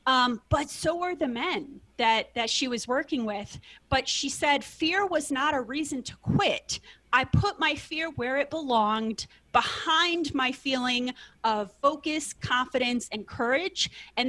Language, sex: English, female